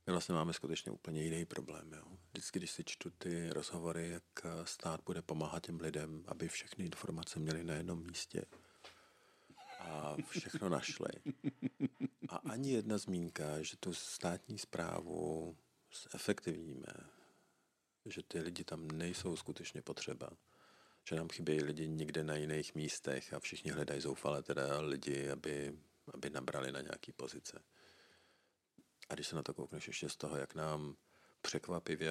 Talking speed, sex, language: 145 wpm, male, Czech